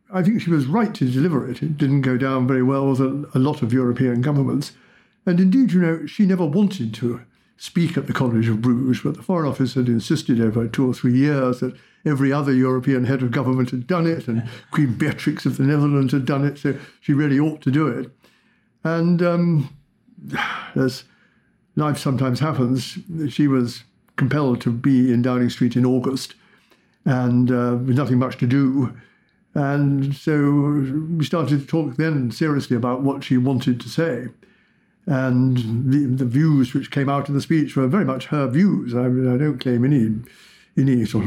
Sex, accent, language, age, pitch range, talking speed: male, British, English, 60-79, 125-155 Hz, 190 wpm